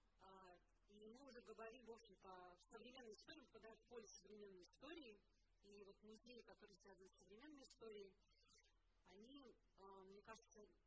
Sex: female